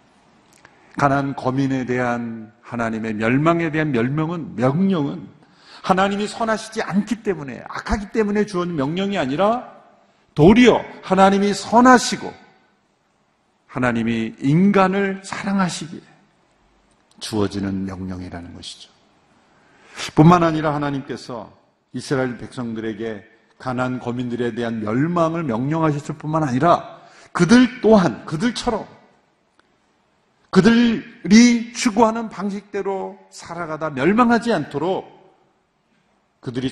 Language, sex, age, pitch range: Korean, male, 50-69, 125-195 Hz